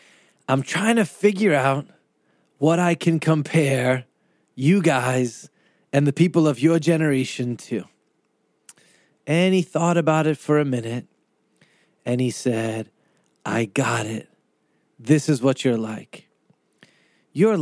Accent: American